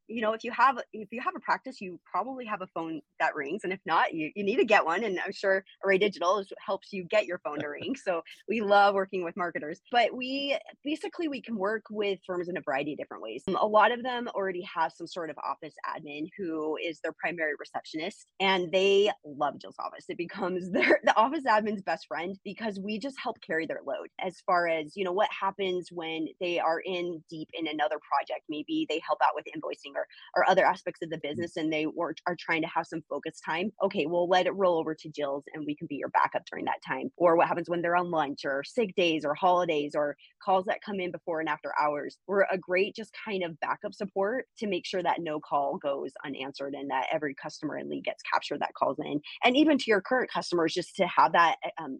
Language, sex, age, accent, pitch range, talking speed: English, female, 20-39, American, 160-210 Hz, 240 wpm